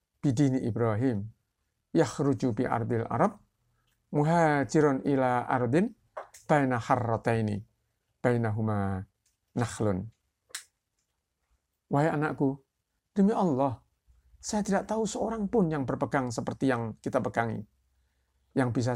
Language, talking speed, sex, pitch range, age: Indonesian, 90 wpm, male, 105-135 Hz, 50-69